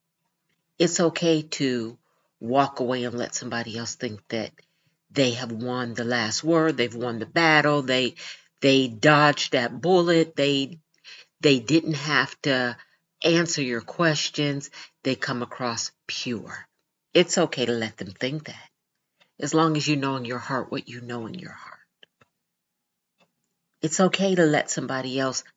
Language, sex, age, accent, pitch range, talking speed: English, female, 50-69, American, 125-165 Hz, 155 wpm